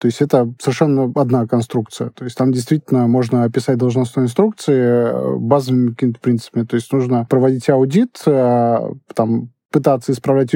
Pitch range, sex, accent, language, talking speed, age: 120-140 Hz, male, native, Russian, 140 wpm, 20-39